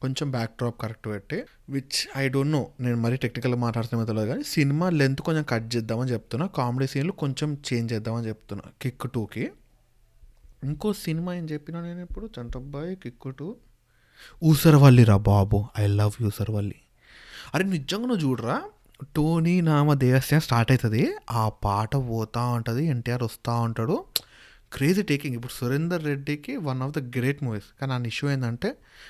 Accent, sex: native, male